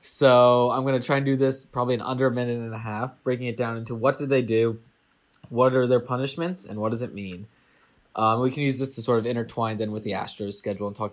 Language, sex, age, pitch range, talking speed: English, male, 20-39, 110-135 Hz, 265 wpm